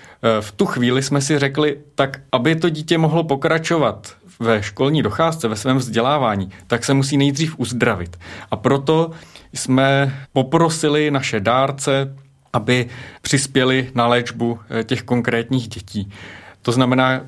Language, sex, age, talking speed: Czech, male, 30-49, 130 wpm